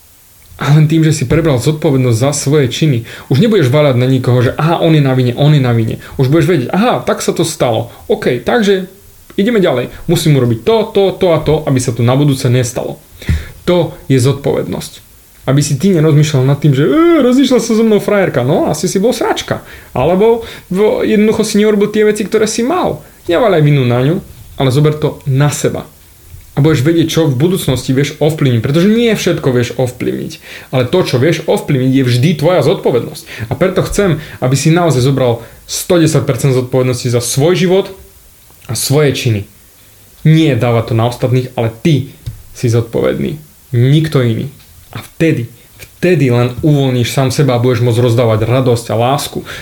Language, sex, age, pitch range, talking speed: Slovak, male, 30-49, 125-170 Hz, 180 wpm